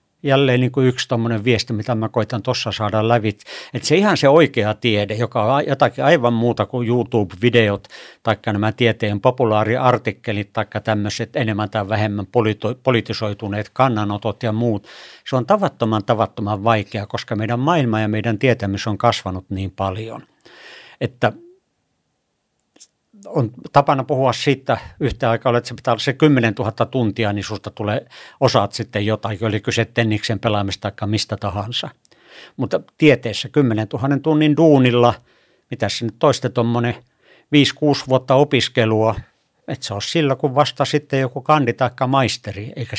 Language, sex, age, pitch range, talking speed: Finnish, male, 60-79, 110-130 Hz, 145 wpm